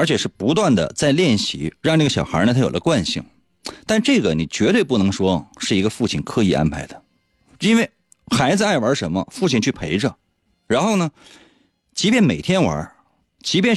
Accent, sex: native, male